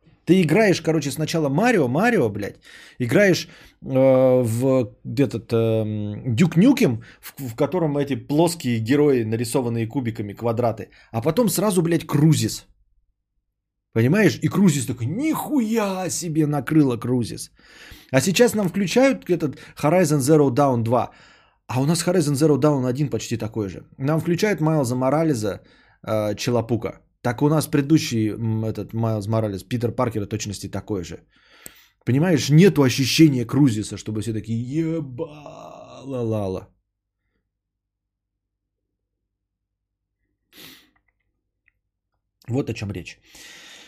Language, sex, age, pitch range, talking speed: Bulgarian, male, 20-39, 105-160 Hz, 115 wpm